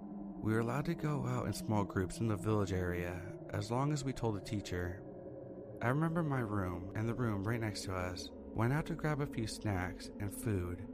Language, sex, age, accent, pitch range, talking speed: English, male, 30-49, American, 95-140 Hz, 220 wpm